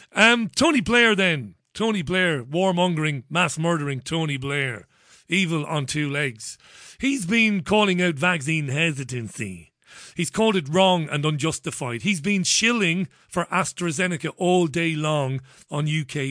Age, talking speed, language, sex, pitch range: 40-59, 135 wpm, English, male, 150-195 Hz